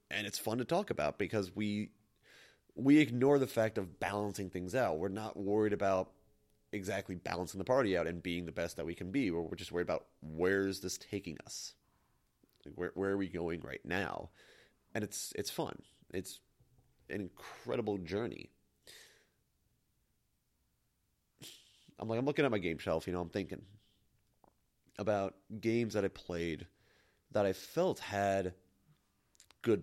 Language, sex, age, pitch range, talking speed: English, male, 30-49, 90-110 Hz, 155 wpm